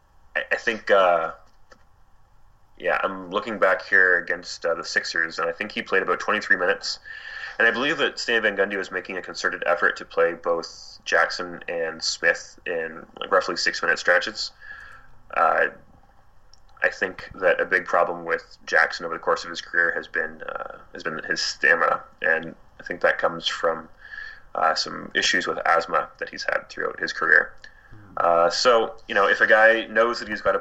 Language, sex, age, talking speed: English, male, 20-39, 180 wpm